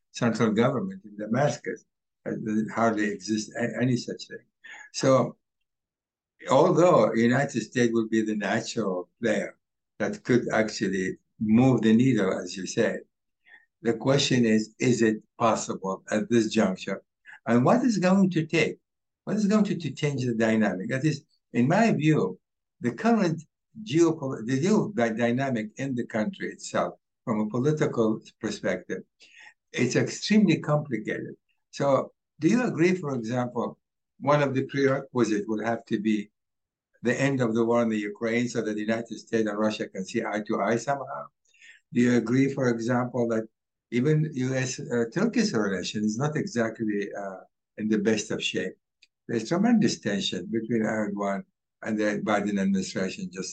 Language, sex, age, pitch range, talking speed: English, male, 60-79, 110-140 Hz, 155 wpm